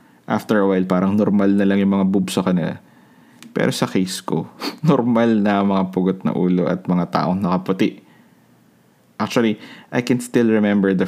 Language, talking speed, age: Filipino, 175 wpm, 20-39